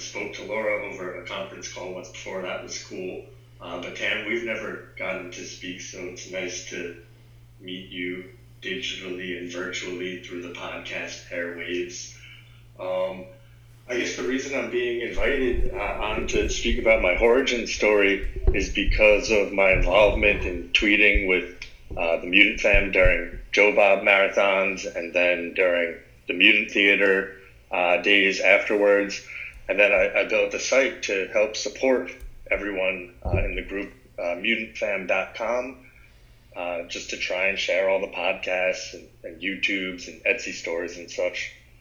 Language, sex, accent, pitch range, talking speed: English, male, American, 90-120 Hz, 155 wpm